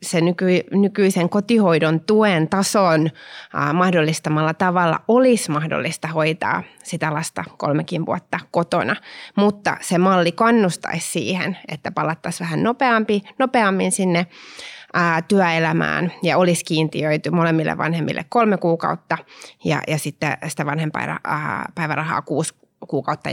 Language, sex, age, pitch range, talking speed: Finnish, female, 20-39, 160-195 Hz, 110 wpm